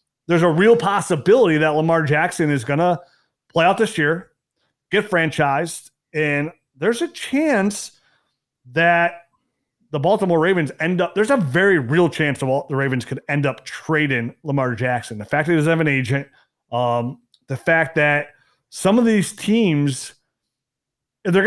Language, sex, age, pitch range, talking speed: English, male, 30-49, 135-180 Hz, 160 wpm